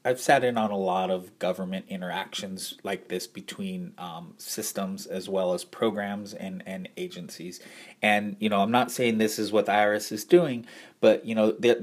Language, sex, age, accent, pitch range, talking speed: English, male, 30-49, American, 100-125 Hz, 195 wpm